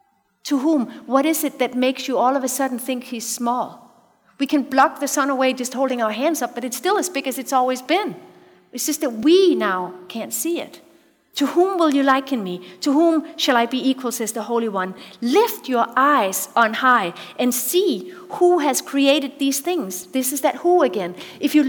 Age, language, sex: 50-69, English, female